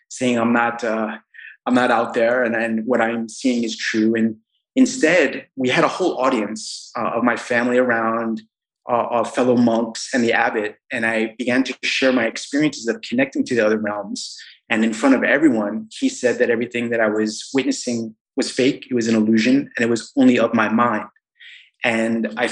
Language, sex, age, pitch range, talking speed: English, male, 30-49, 110-135 Hz, 200 wpm